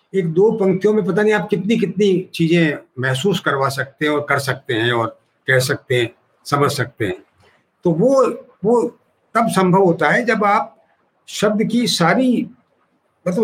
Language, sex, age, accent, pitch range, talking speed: Hindi, male, 60-79, native, 155-215 Hz, 170 wpm